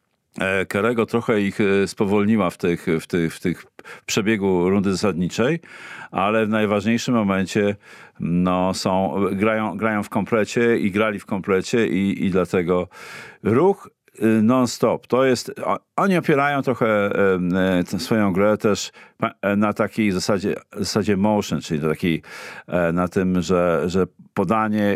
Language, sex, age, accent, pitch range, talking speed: Polish, male, 50-69, native, 95-110 Hz, 140 wpm